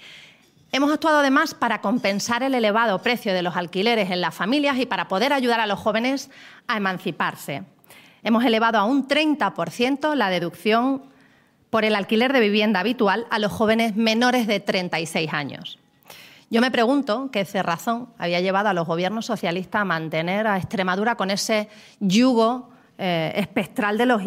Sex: female